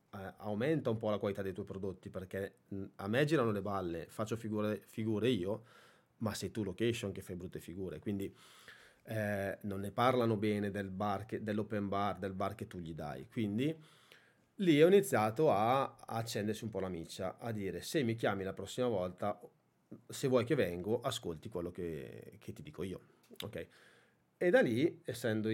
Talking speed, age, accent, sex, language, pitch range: 185 wpm, 30-49, native, male, Italian, 95-115 Hz